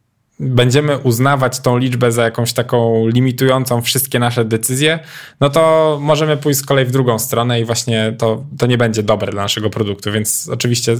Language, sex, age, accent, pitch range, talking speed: Polish, male, 10-29, native, 115-135 Hz, 175 wpm